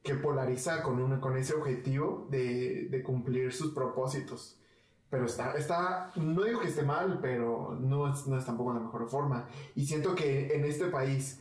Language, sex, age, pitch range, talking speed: Spanish, male, 20-39, 130-155 Hz, 185 wpm